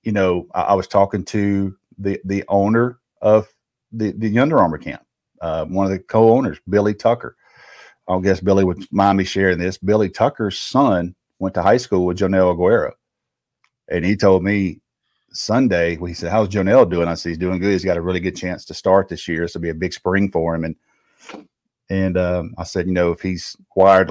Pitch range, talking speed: 85-105 Hz, 210 wpm